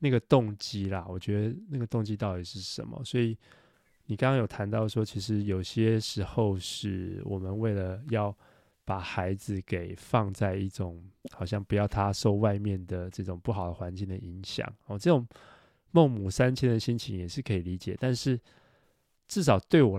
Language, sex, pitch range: Chinese, male, 95-120 Hz